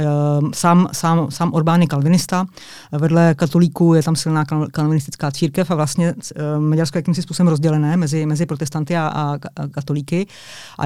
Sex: female